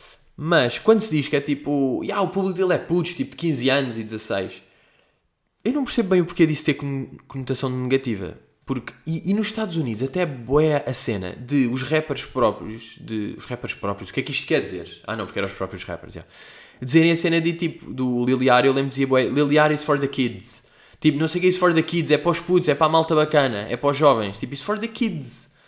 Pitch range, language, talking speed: 120-170 Hz, Portuguese, 250 wpm